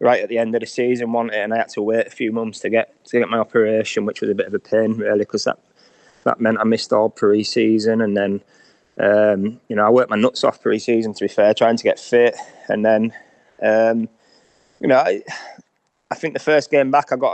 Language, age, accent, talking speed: English, 20-39, British, 240 wpm